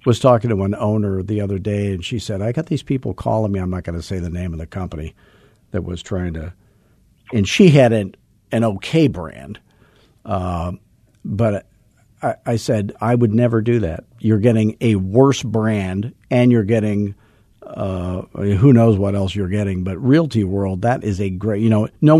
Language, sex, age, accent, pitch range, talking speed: English, male, 50-69, American, 95-120 Hz, 195 wpm